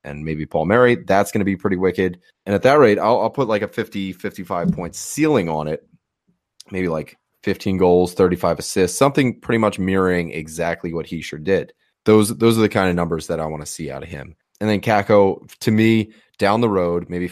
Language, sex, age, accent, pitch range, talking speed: English, male, 30-49, American, 85-100 Hz, 220 wpm